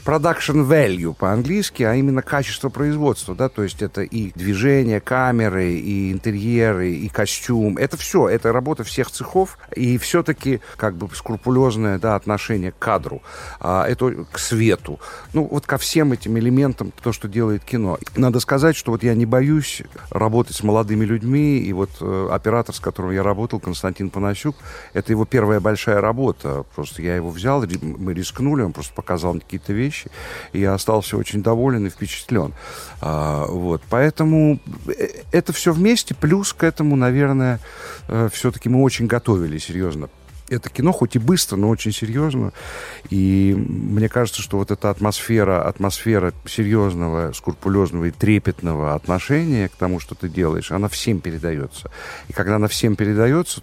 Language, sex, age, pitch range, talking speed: Russian, male, 50-69, 95-130 Hz, 155 wpm